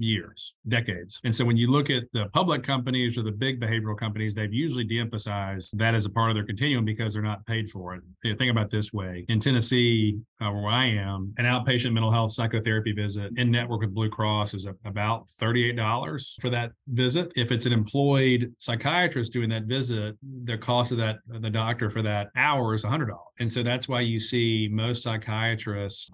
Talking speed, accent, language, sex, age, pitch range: 205 wpm, American, English, male, 40-59, 110-120 Hz